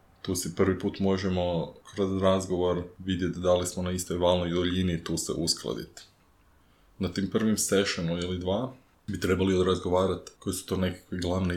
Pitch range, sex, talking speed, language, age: 85-95 Hz, male, 165 wpm, Croatian, 20-39